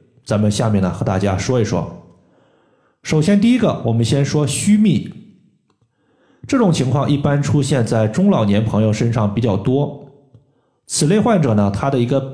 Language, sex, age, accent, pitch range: Chinese, male, 20-39, native, 110-150 Hz